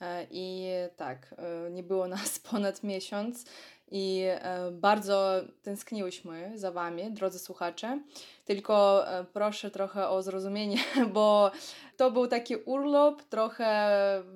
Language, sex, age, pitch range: Polish, female, 20-39, 185-220 Hz